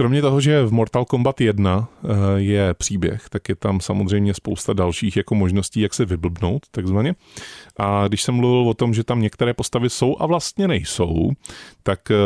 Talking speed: 175 wpm